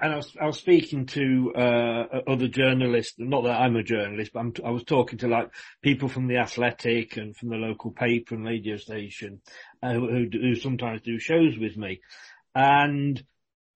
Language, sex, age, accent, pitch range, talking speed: English, male, 40-59, British, 120-160 Hz, 190 wpm